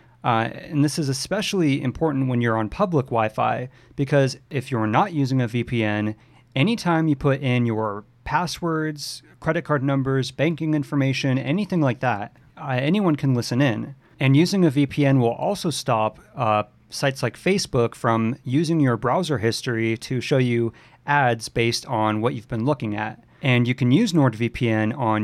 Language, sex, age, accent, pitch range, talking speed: English, male, 40-59, American, 115-145 Hz, 165 wpm